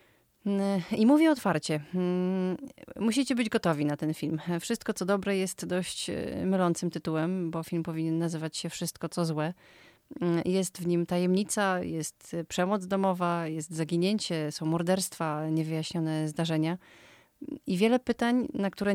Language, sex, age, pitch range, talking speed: Polish, female, 30-49, 160-185 Hz, 135 wpm